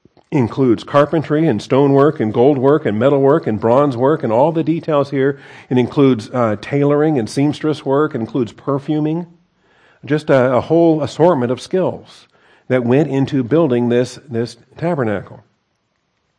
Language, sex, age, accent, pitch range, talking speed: English, male, 50-69, American, 120-145 Hz, 155 wpm